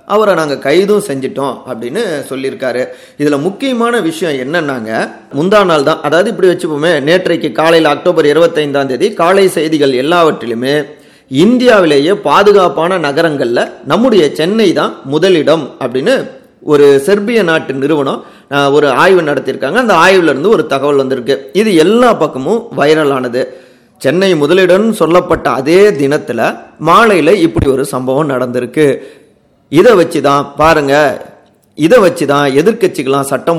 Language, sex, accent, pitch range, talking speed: Tamil, male, native, 140-180 Hz, 105 wpm